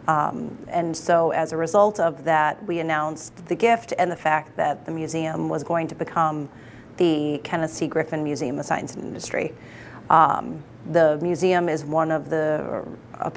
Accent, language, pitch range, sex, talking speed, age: American, English, 155-175 Hz, female, 175 wpm, 30-49